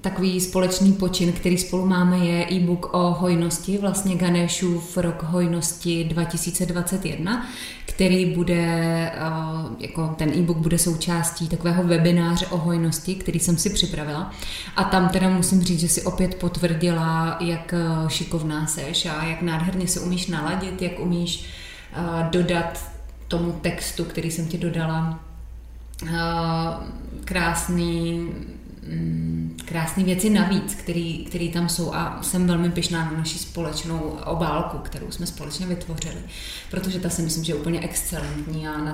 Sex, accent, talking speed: female, native, 135 wpm